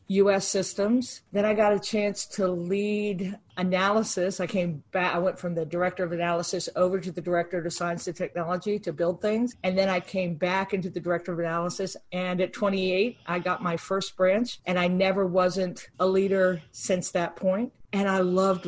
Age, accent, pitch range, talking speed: 50-69, American, 180-210 Hz, 195 wpm